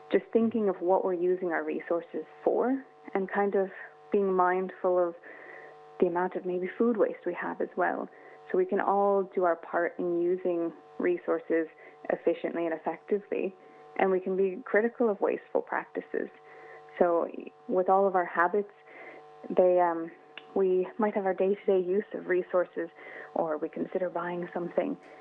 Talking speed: 155 wpm